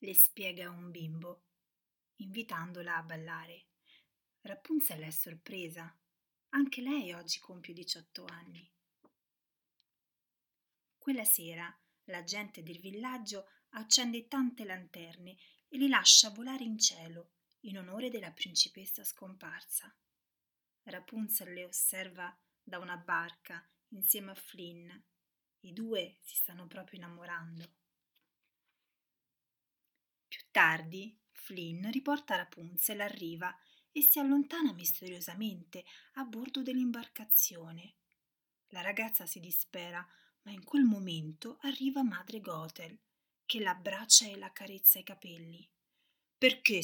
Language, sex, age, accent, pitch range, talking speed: Italian, female, 30-49, native, 175-225 Hz, 105 wpm